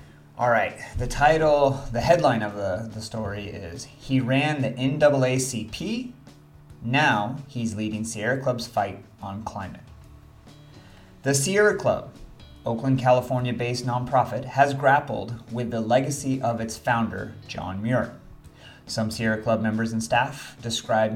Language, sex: English, male